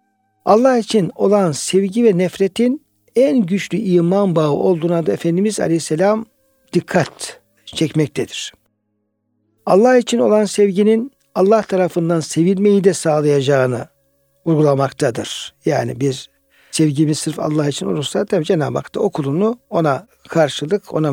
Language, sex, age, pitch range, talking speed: Turkish, male, 60-79, 145-190 Hz, 120 wpm